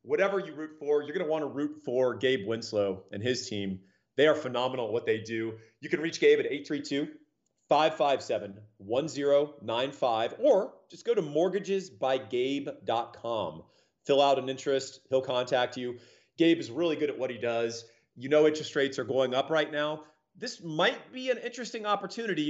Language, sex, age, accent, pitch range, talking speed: English, male, 40-59, American, 120-155 Hz, 170 wpm